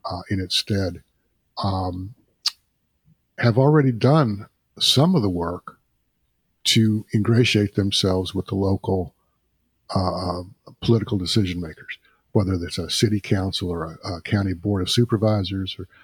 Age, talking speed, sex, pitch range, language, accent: 50-69, 130 wpm, male, 95-120 Hz, English, American